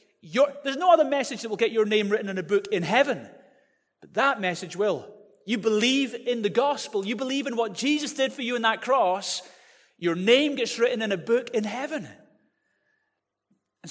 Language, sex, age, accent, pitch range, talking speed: English, male, 30-49, British, 155-205 Hz, 200 wpm